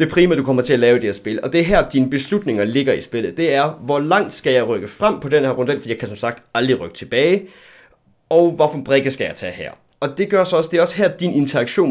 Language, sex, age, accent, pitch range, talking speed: Danish, male, 30-49, native, 125-155 Hz, 295 wpm